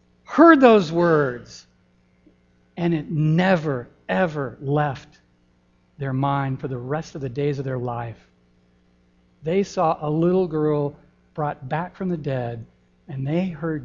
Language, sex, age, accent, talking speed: English, male, 60-79, American, 140 wpm